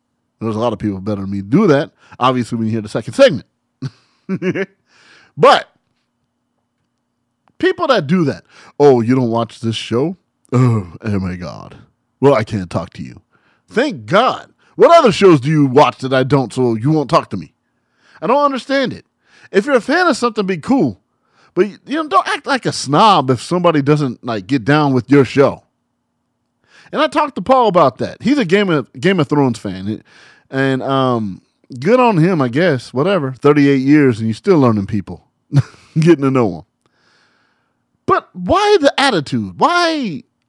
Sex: male